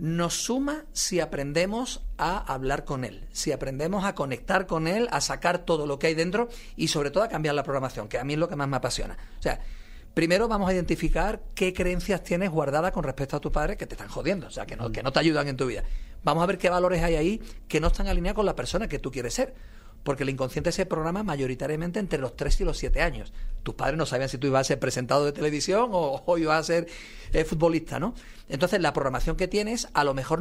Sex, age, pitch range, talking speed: male, 40-59, 135-175 Hz, 250 wpm